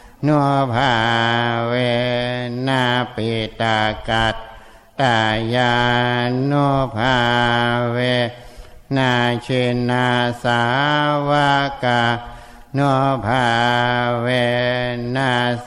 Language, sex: Thai, male